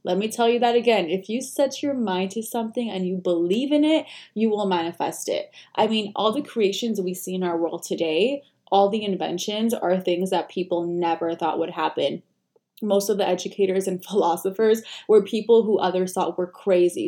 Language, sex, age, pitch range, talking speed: English, female, 20-39, 180-230 Hz, 200 wpm